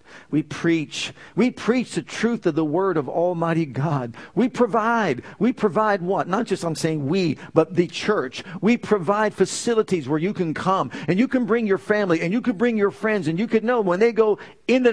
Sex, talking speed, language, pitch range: male, 210 wpm, English, 155-215 Hz